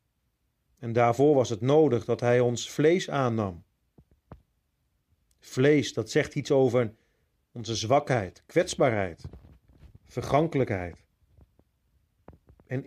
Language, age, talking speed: Dutch, 40-59, 95 wpm